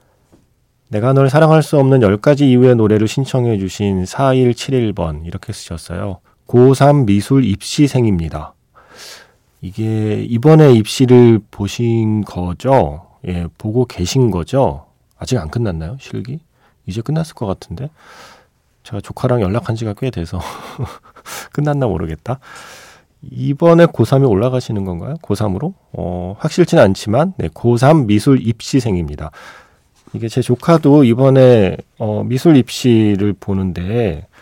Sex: male